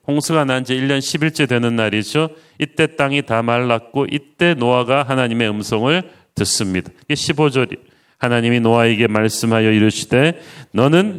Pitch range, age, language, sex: 120-155 Hz, 40-59, Korean, male